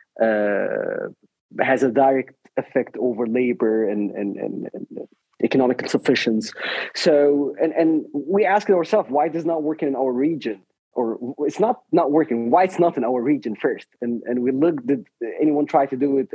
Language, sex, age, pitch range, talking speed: English, male, 30-49, 120-160 Hz, 180 wpm